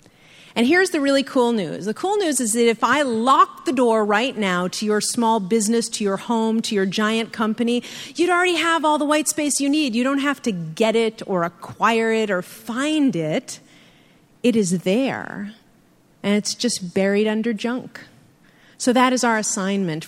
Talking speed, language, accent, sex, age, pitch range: 190 wpm, English, American, female, 40-59, 200-255 Hz